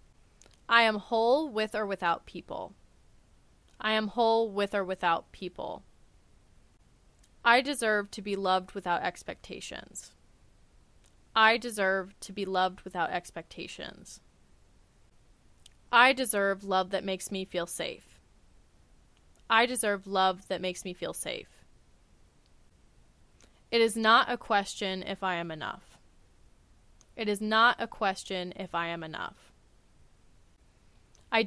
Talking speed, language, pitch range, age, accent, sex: 120 wpm, English, 175-220 Hz, 20-39, American, female